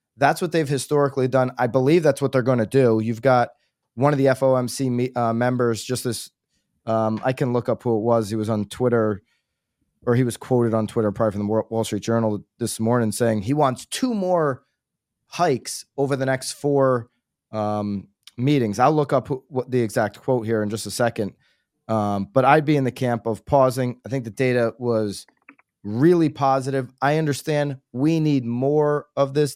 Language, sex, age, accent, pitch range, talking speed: English, male, 30-49, American, 115-145 Hz, 195 wpm